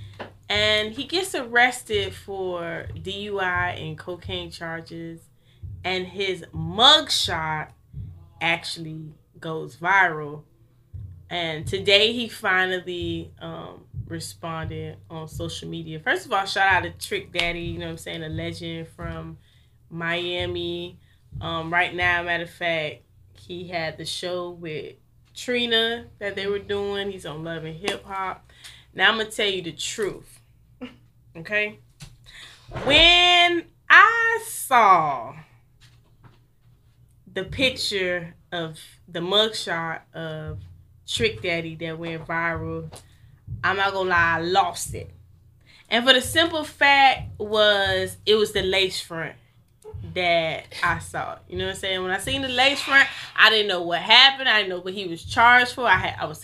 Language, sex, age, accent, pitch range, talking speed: English, female, 20-39, American, 125-200 Hz, 145 wpm